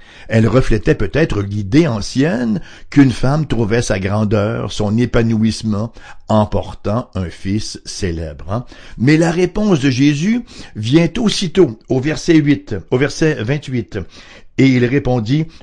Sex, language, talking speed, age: male, English, 125 wpm, 60-79